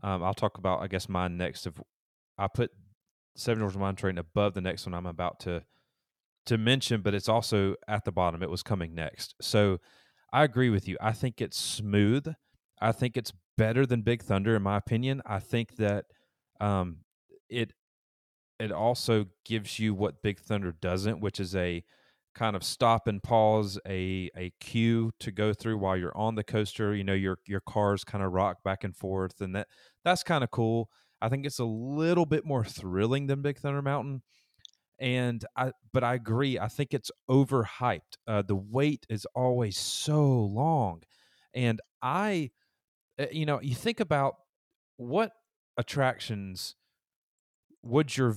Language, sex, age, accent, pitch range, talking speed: English, male, 30-49, American, 100-130 Hz, 175 wpm